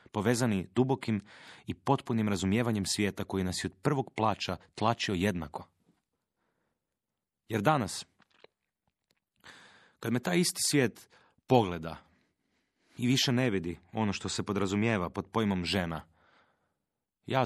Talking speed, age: 115 wpm, 30-49